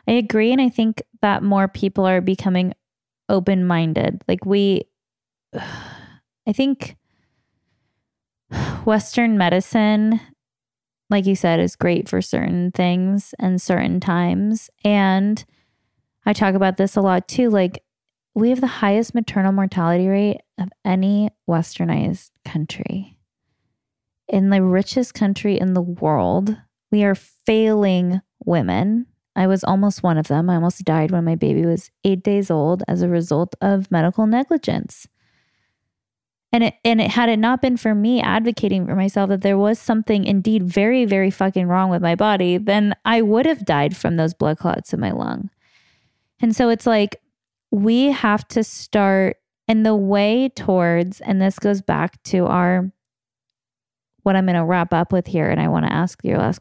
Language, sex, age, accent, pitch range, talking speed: English, female, 10-29, American, 175-215 Hz, 160 wpm